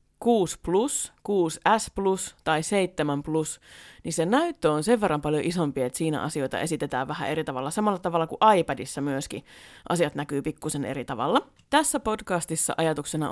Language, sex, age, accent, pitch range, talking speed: Finnish, female, 30-49, native, 150-205 Hz, 160 wpm